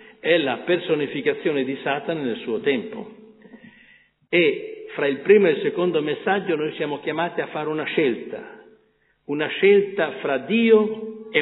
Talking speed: 145 wpm